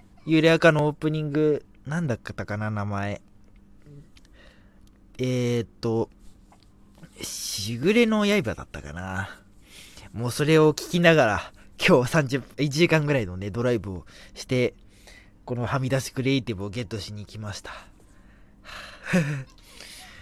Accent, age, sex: native, 20-39, male